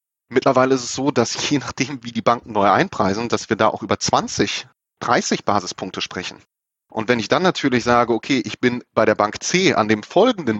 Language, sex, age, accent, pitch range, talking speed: German, male, 30-49, German, 120-150 Hz, 210 wpm